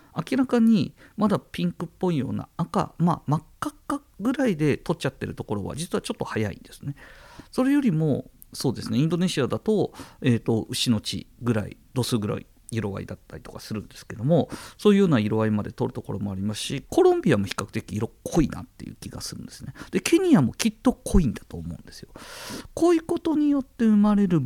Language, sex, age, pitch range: Japanese, male, 50-69, 110-175 Hz